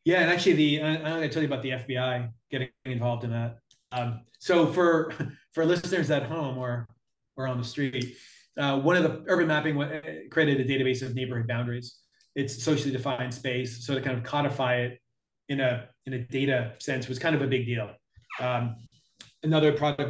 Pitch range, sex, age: 120-140 Hz, male, 30-49